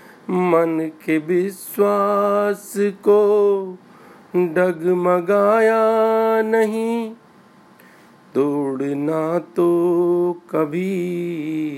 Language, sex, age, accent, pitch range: Hindi, male, 50-69, native, 170-210 Hz